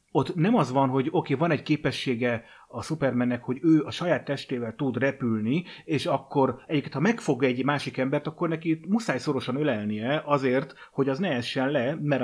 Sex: male